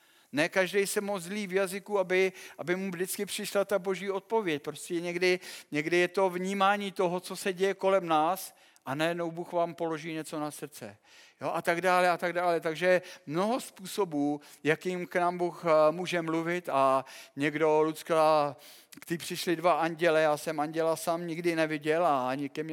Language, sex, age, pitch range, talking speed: Czech, male, 50-69, 150-180 Hz, 175 wpm